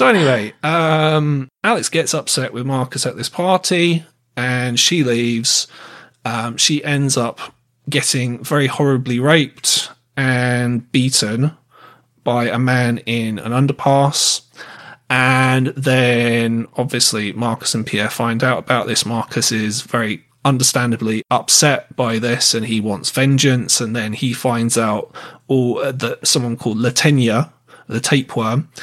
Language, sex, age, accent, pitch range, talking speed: English, male, 30-49, British, 115-140 Hz, 130 wpm